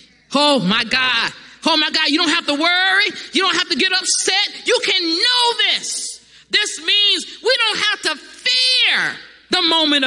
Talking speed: 180 wpm